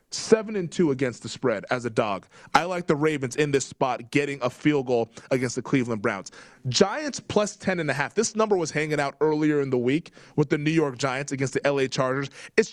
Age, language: 20-39, English